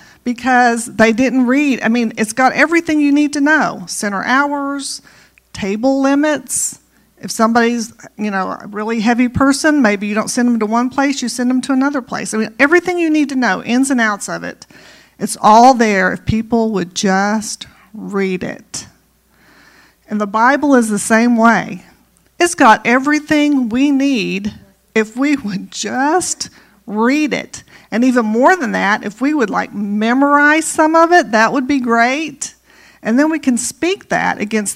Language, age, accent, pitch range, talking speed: English, 40-59, American, 210-275 Hz, 180 wpm